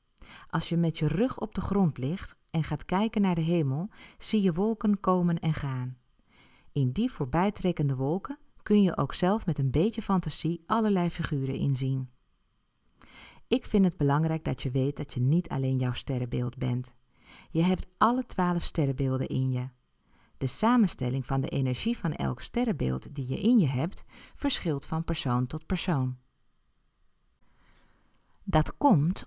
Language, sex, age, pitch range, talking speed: Dutch, female, 40-59, 135-200 Hz, 160 wpm